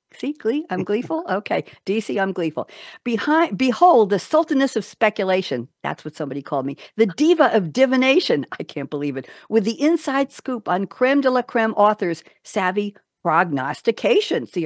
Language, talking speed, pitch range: English, 165 wpm, 165-255 Hz